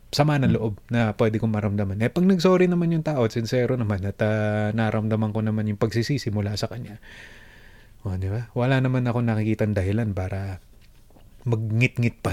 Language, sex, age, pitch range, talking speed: Filipino, male, 20-39, 110-155 Hz, 175 wpm